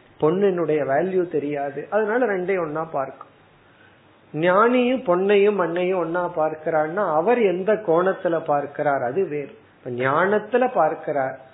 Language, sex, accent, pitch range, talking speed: Tamil, male, native, 135-180 Hz, 70 wpm